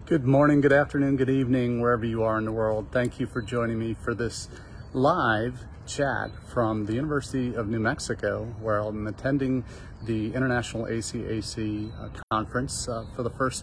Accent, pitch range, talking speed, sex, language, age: American, 110-125 Hz, 165 wpm, male, English, 40-59